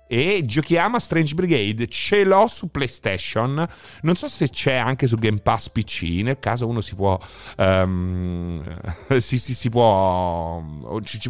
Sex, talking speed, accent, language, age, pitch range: male, 155 wpm, native, Italian, 30-49, 100-145 Hz